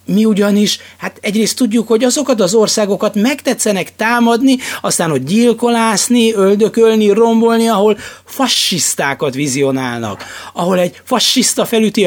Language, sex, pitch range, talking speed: Hungarian, male, 155-215 Hz, 115 wpm